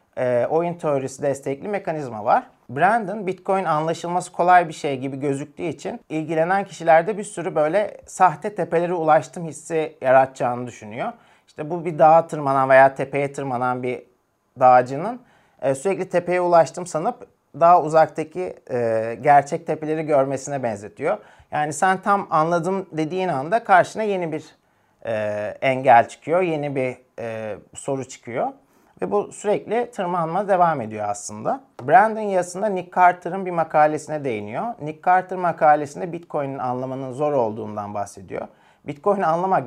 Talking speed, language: 125 wpm, Turkish